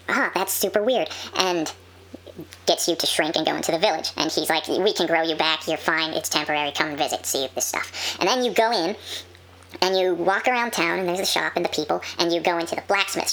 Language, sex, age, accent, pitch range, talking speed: English, male, 10-29, American, 155-185 Hz, 255 wpm